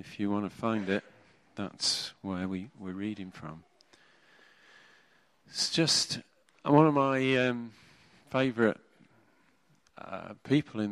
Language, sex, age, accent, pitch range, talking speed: English, male, 40-59, British, 100-135 Hz, 125 wpm